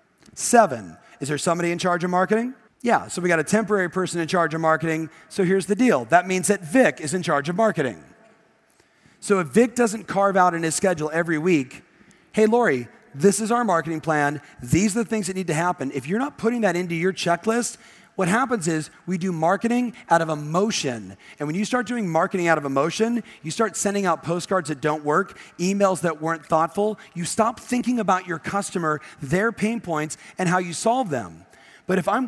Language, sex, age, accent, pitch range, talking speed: English, male, 40-59, American, 155-205 Hz, 210 wpm